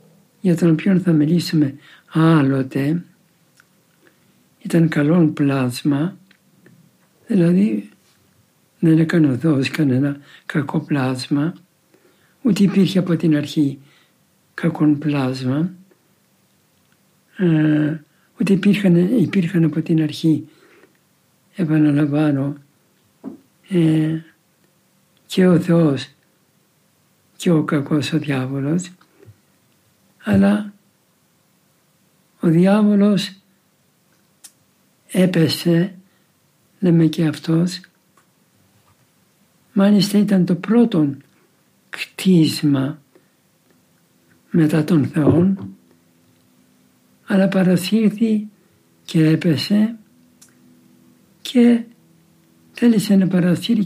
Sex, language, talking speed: male, Greek, 70 wpm